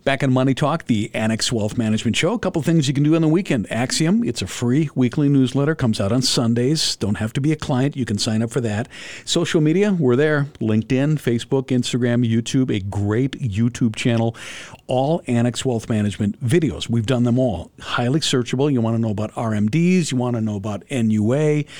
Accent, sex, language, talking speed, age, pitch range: American, male, English, 205 wpm, 50-69, 110-135 Hz